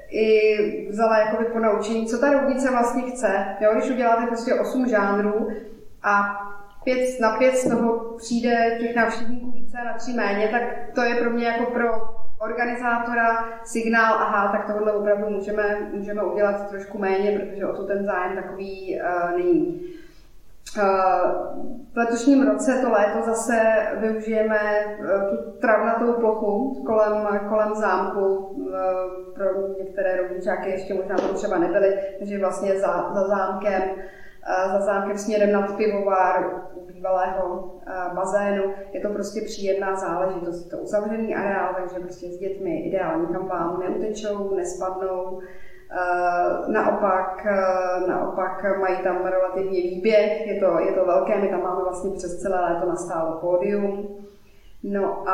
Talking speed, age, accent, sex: 140 wpm, 20-39, native, female